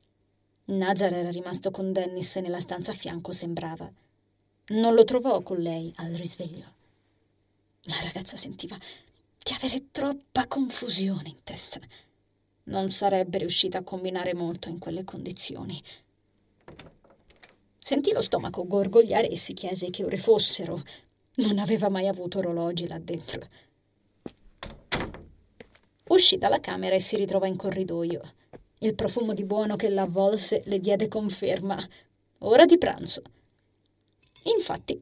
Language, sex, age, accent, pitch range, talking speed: Italian, female, 30-49, native, 170-220 Hz, 125 wpm